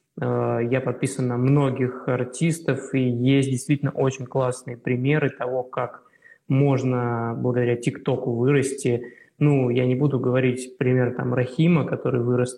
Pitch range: 125-140 Hz